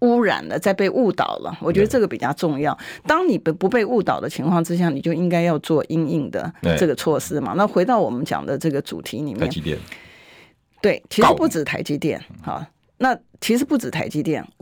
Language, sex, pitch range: Chinese, female, 160-220 Hz